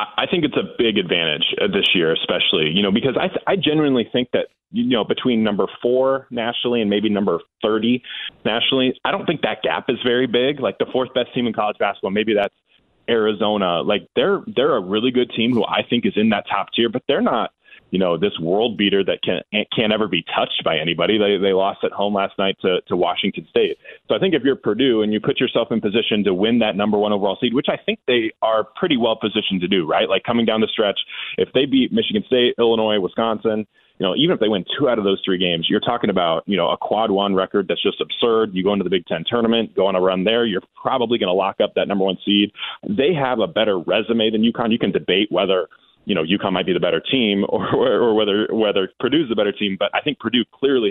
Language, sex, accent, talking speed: English, male, American, 250 wpm